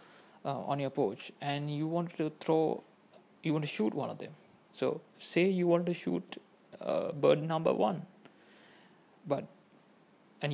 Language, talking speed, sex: English, 160 wpm, male